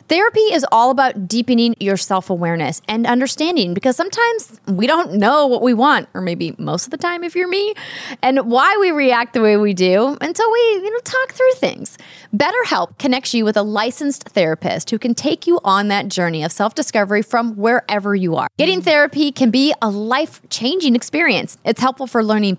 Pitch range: 200-290 Hz